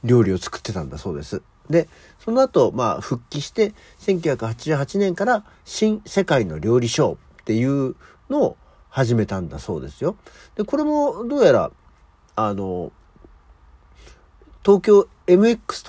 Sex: male